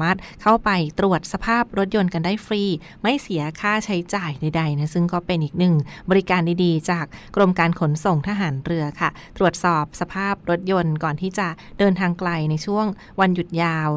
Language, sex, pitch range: Thai, female, 165-200 Hz